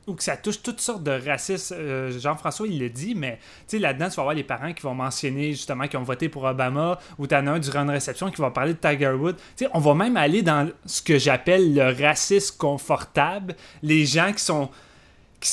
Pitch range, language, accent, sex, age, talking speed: 140-180 Hz, French, Canadian, male, 30-49, 230 wpm